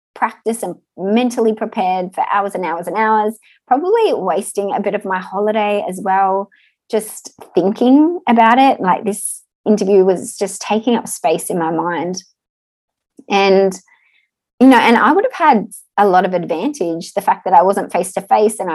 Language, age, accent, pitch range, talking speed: English, 20-39, Australian, 175-220 Hz, 175 wpm